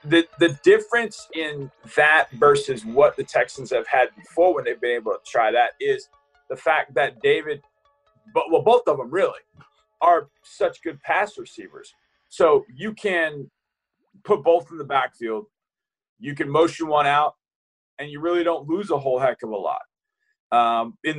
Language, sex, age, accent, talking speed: English, male, 30-49, American, 175 wpm